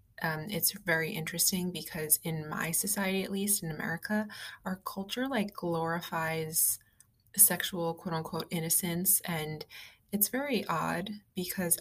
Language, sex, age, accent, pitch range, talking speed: English, female, 20-39, American, 160-190 Hz, 125 wpm